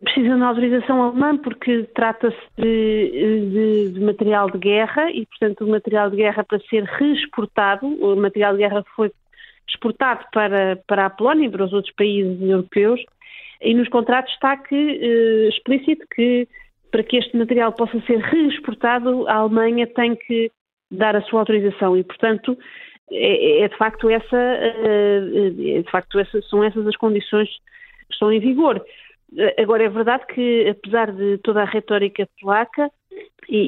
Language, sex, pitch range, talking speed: Portuguese, female, 195-240 Hz, 160 wpm